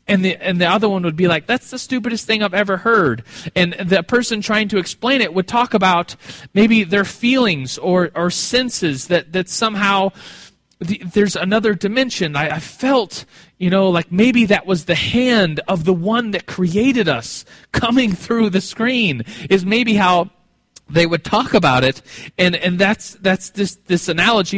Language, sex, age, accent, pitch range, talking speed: English, male, 30-49, American, 165-220 Hz, 185 wpm